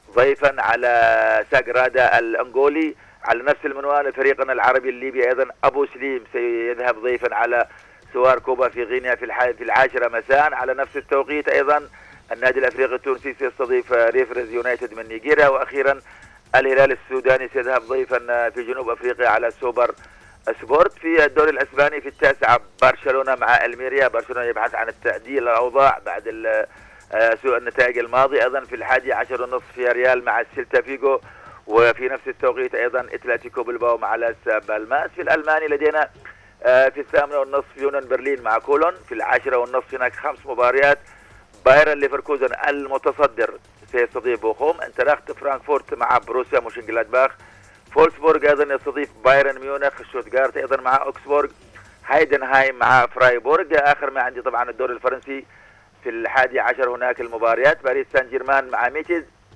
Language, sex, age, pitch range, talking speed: Arabic, male, 50-69, 120-145 Hz, 140 wpm